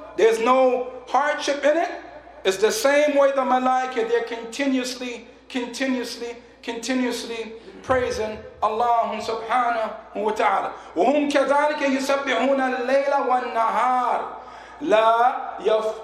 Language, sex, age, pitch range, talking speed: English, male, 40-59, 230-280 Hz, 80 wpm